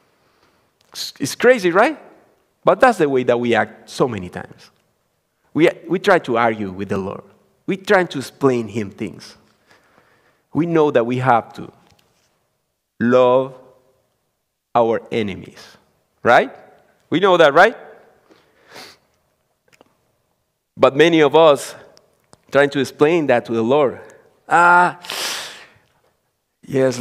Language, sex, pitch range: English, male, 115-155 Hz